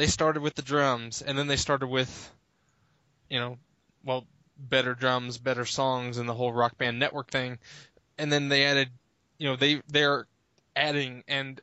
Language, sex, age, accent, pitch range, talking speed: English, male, 20-39, American, 125-150 Hz, 180 wpm